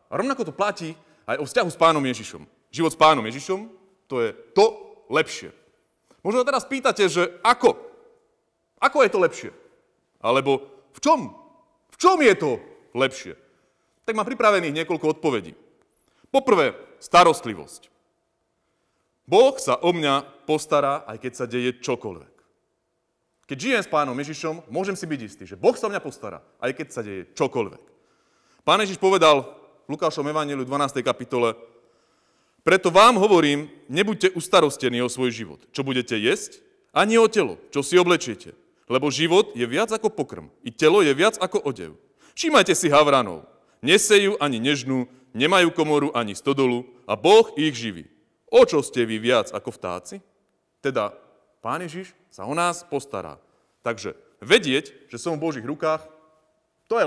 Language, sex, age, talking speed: Slovak, male, 30-49, 155 wpm